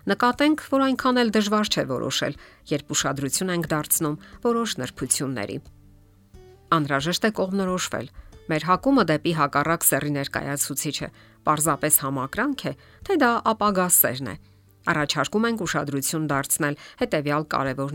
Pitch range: 140-195 Hz